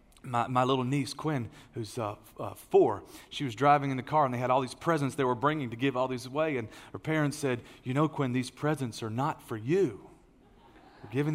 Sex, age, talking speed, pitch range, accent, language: male, 40-59, 240 wpm, 130-155 Hz, American, English